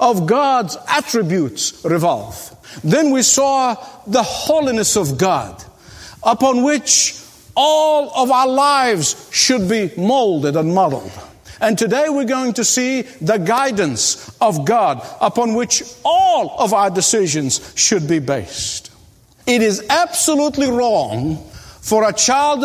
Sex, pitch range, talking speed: male, 190-265 Hz, 125 wpm